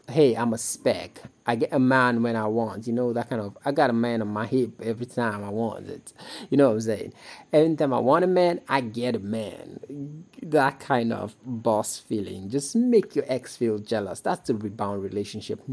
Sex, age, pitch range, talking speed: male, 30-49, 110-160 Hz, 220 wpm